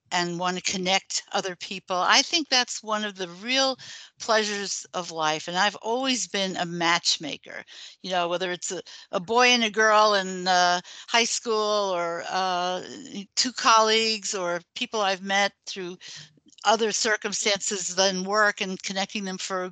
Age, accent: 60-79, American